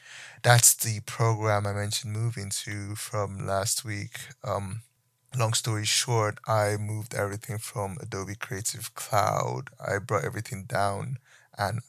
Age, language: 20-39, English